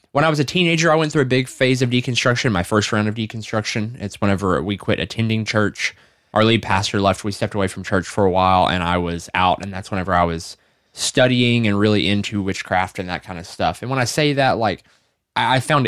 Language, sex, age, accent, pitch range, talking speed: English, male, 20-39, American, 95-115 Hz, 240 wpm